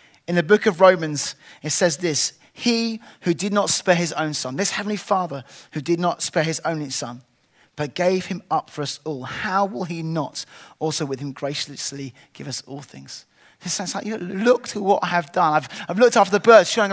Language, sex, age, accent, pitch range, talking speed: English, male, 20-39, British, 145-190 Hz, 225 wpm